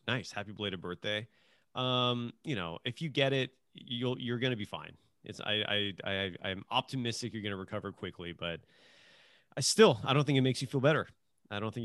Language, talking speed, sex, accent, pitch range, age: English, 205 wpm, male, American, 105-140 Hz, 30-49